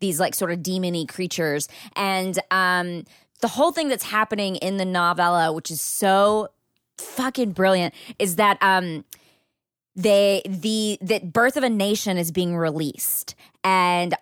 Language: English